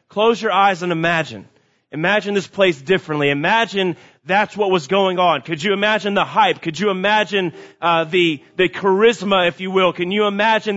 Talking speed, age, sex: 185 wpm, 30-49, male